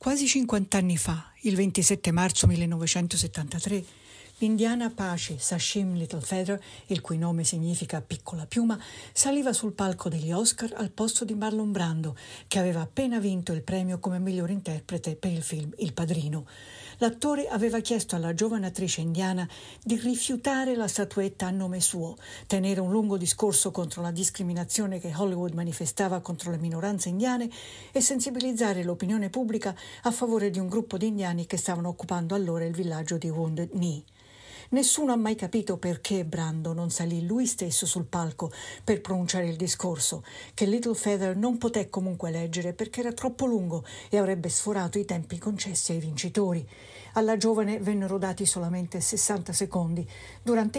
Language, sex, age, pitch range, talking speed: Italian, female, 60-79, 175-215 Hz, 160 wpm